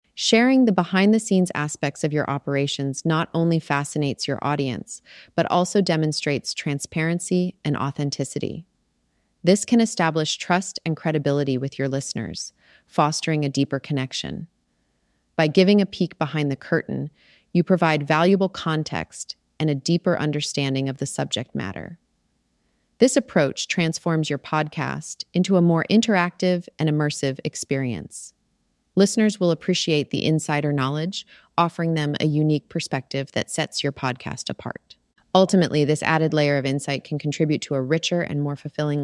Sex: female